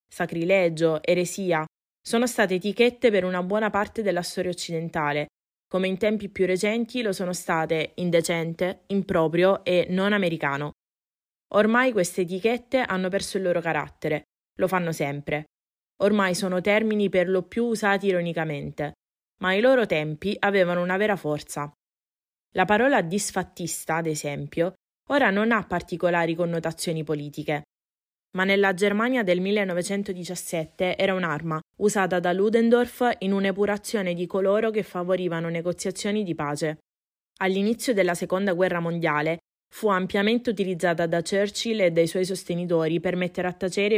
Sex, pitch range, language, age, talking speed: female, 165-200 Hz, Italian, 20-39, 135 wpm